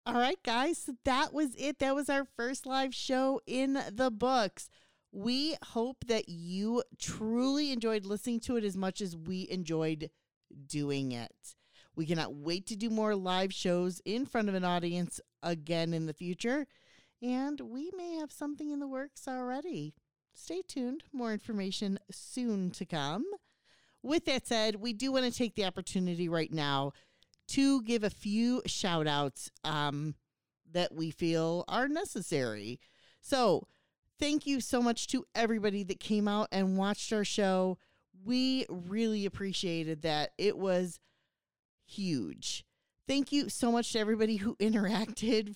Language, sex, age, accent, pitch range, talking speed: English, female, 40-59, American, 185-250 Hz, 150 wpm